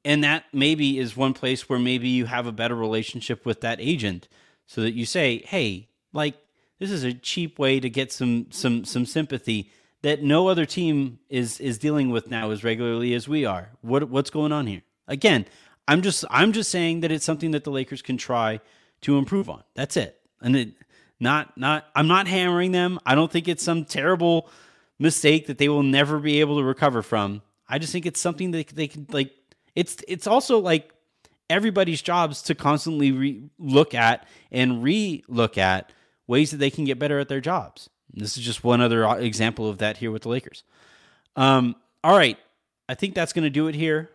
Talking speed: 210 wpm